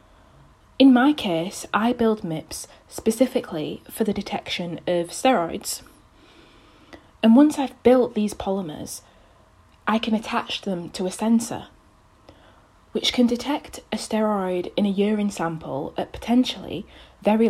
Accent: British